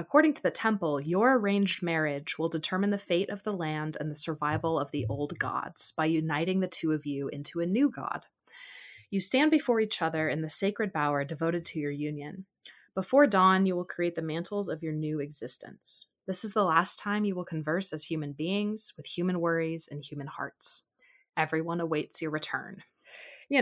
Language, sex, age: English, female, 20-39